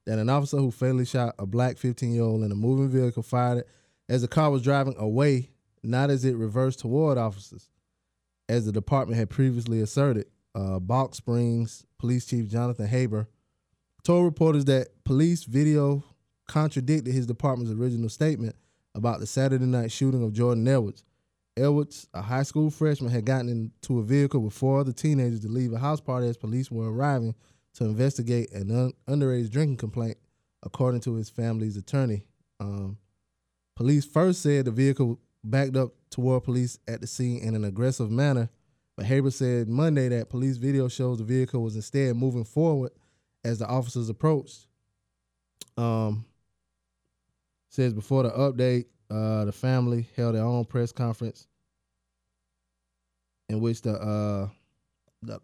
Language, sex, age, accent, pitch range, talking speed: English, male, 20-39, American, 110-135 Hz, 155 wpm